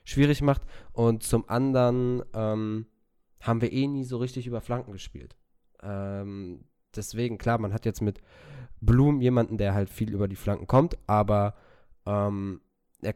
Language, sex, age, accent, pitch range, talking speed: German, male, 20-39, German, 100-120 Hz, 155 wpm